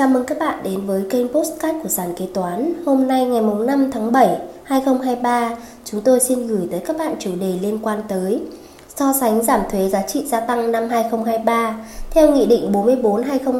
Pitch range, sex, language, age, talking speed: 215-255 Hz, female, Vietnamese, 20-39, 250 wpm